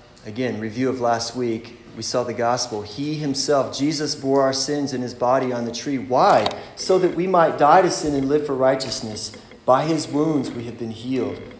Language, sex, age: English, male, 30-49